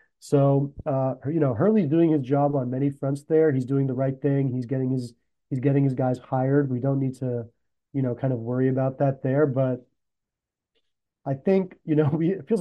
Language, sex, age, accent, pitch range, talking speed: English, male, 30-49, American, 130-145 Hz, 215 wpm